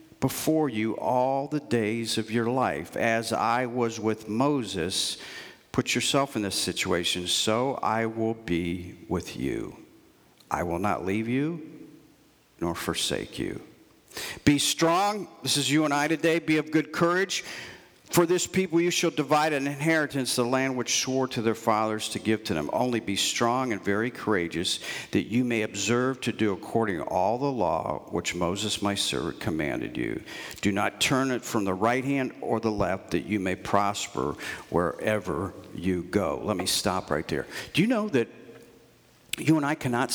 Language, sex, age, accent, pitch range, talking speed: English, male, 50-69, American, 105-140 Hz, 175 wpm